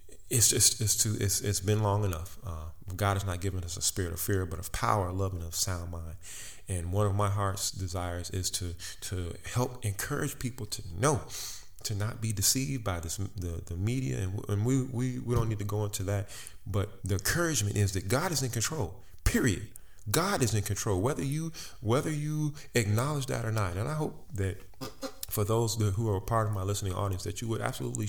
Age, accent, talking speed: 30-49, American, 215 wpm